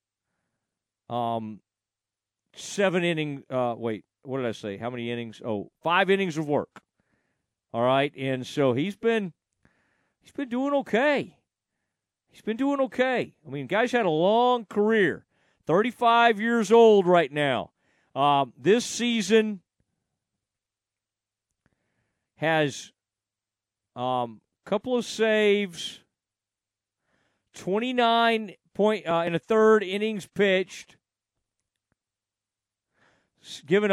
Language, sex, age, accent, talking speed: English, male, 40-59, American, 110 wpm